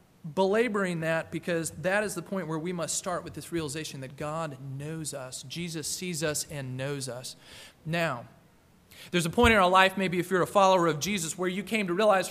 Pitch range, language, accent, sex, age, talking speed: 150-190 Hz, English, American, male, 40-59, 210 wpm